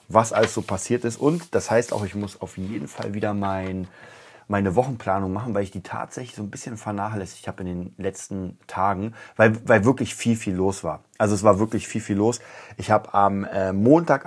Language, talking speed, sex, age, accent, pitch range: German, 210 wpm, male, 30-49, German, 95-110 Hz